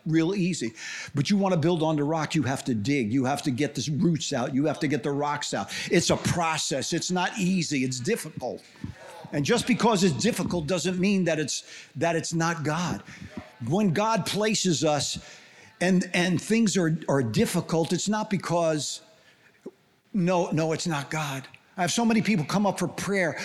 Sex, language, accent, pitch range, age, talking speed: male, English, American, 160-205 Hz, 50-69, 195 wpm